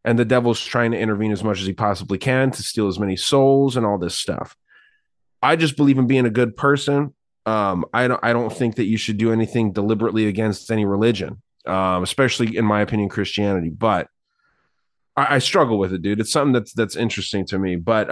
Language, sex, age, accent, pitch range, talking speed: English, male, 30-49, American, 105-130 Hz, 215 wpm